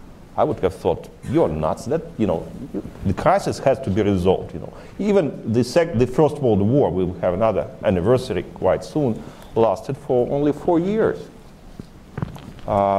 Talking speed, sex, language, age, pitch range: 180 wpm, male, English, 50-69, 95-140 Hz